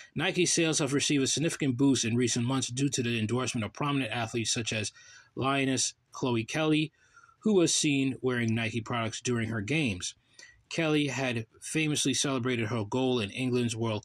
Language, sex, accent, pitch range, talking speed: English, male, American, 115-140 Hz, 170 wpm